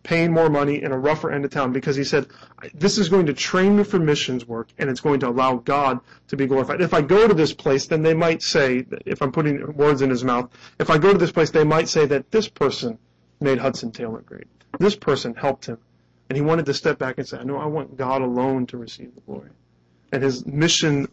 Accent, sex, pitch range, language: American, male, 115-150 Hz, English